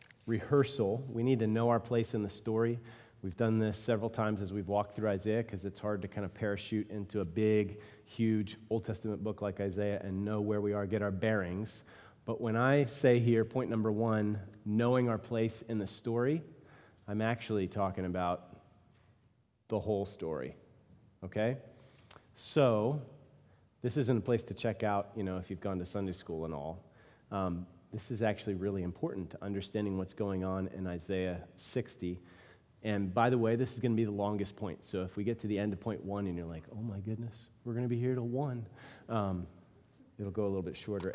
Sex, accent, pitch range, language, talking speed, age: male, American, 100-120 Hz, English, 205 wpm, 30-49